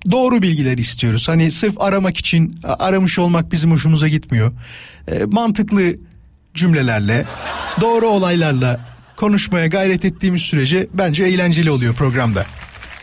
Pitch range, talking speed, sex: 140-185 Hz, 110 wpm, male